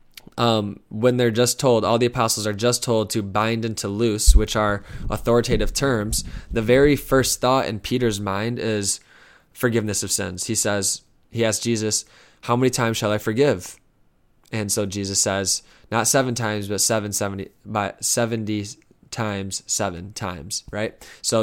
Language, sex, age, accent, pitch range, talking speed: English, male, 20-39, American, 105-120 Hz, 165 wpm